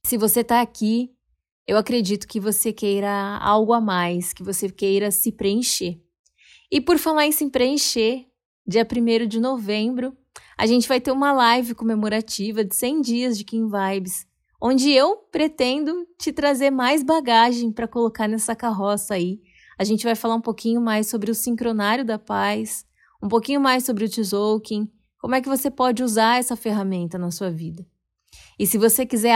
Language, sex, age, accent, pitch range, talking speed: Portuguese, female, 20-39, Brazilian, 210-255 Hz, 175 wpm